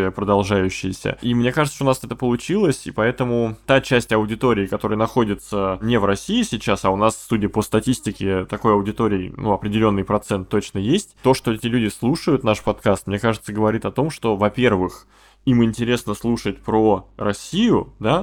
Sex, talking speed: male, 175 wpm